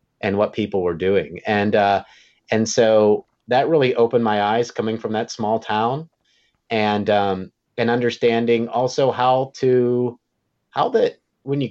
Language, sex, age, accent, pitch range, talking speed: English, male, 30-49, American, 100-135 Hz, 155 wpm